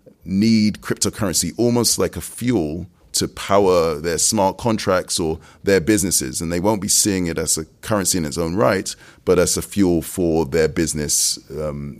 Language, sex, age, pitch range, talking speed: English, male, 30-49, 75-95 Hz, 175 wpm